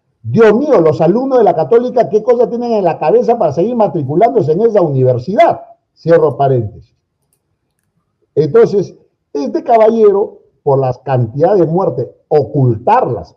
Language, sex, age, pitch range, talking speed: Spanish, male, 50-69, 125-180 Hz, 135 wpm